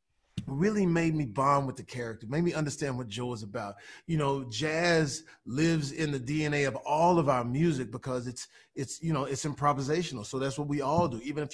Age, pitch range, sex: 30-49, 140-170 Hz, male